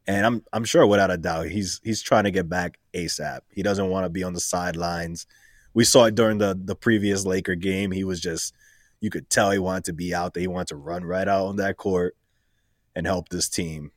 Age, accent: 20-39, American